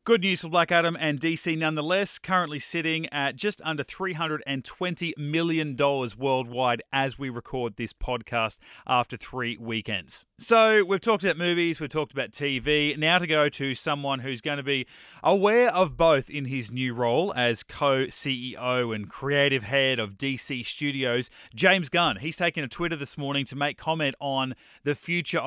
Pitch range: 130-170 Hz